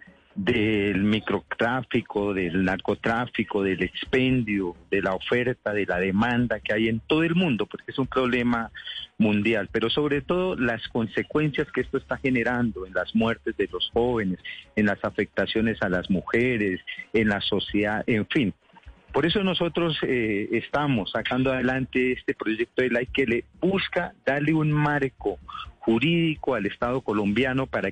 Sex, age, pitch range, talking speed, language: male, 40-59, 105-145 Hz, 155 wpm, Spanish